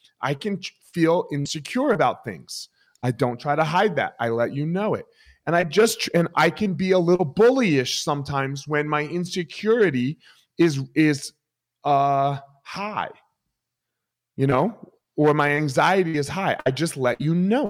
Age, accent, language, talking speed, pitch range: 30-49, American, English, 160 wpm, 135-185 Hz